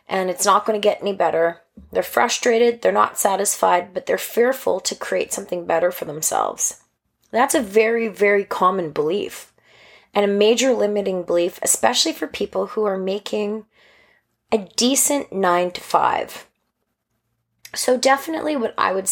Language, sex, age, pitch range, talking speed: English, female, 20-39, 195-240 Hz, 155 wpm